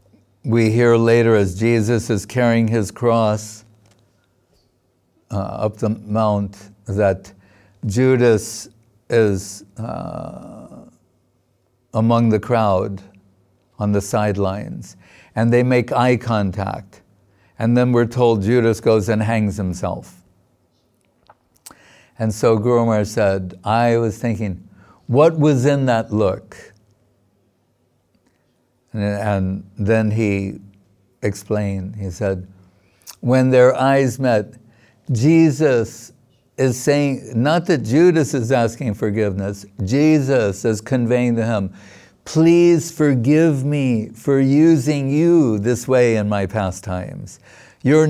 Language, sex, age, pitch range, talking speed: English, male, 60-79, 100-130 Hz, 105 wpm